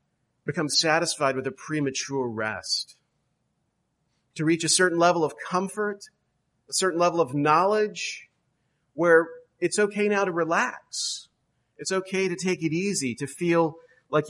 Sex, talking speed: male, 140 wpm